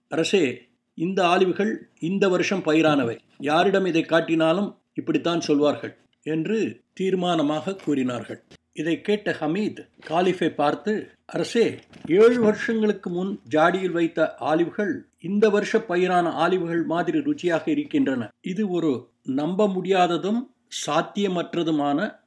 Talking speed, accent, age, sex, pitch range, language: 100 wpm, native, 60-79, male, 155-195 Hz, Tamil